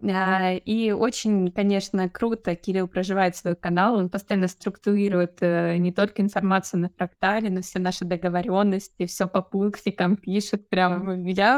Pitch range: 185-220 Hz